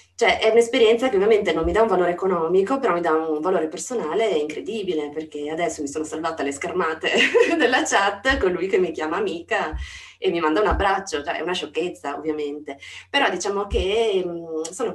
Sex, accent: female, native